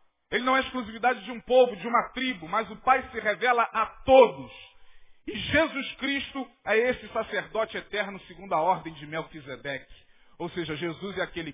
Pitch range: 160-235 Hz